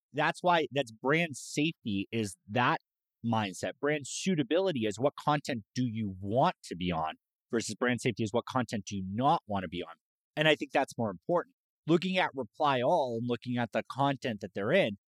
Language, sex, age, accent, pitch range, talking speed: English, male, 30-49, American, 110-145 Hz, 200 wpm